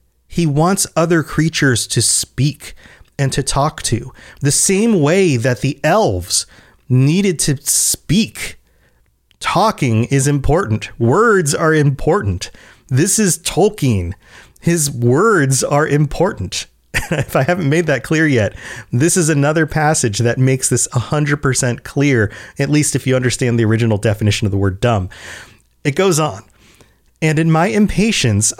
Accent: American